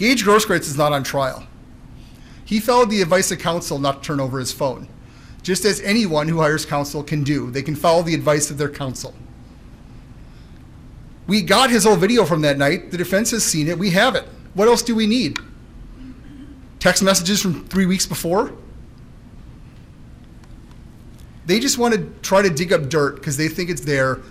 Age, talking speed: 30-49, 185 wpm